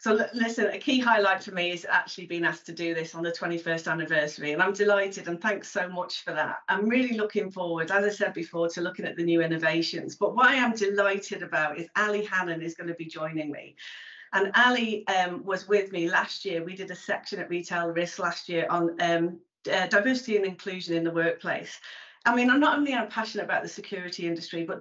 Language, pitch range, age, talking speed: English, 170-210 Hz, 40-59, 225 wpm